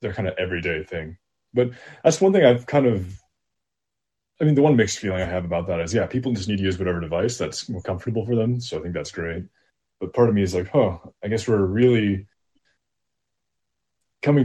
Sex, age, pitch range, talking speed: male, 20-39, 85-115 Hz, 220 wpm